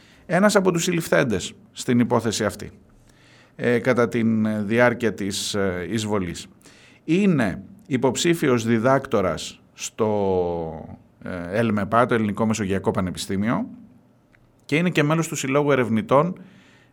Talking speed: 105 wpm